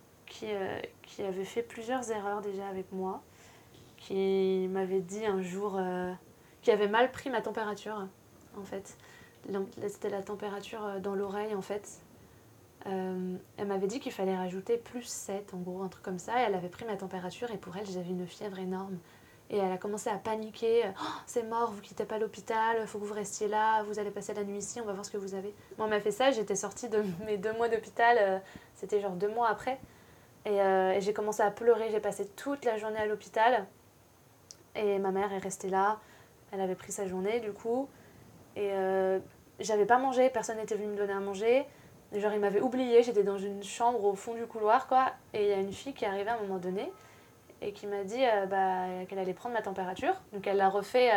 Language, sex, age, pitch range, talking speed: French, female, 20-39, 190-220 Hz, 220 wpm